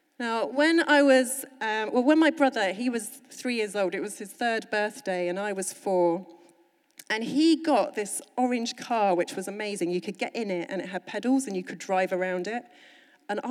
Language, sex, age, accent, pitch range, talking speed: English, female, 30-49, British, 210-280 Hz, 215 wpm